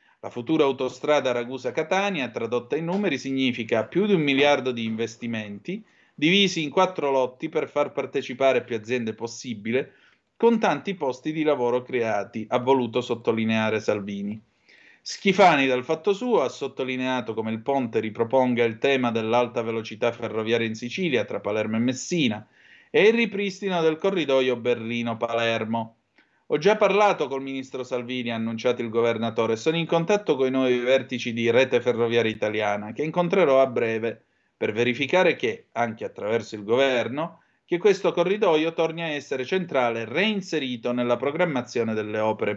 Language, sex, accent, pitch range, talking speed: Italian, male, native, 115-165 Hz, 150 wpm